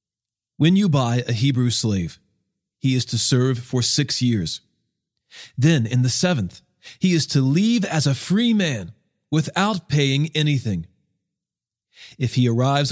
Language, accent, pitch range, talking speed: English, American, 120-165 Hz, 145 wpm